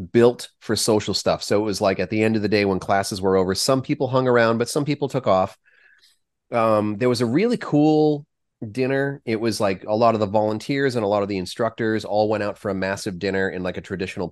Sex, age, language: male, 30-49, English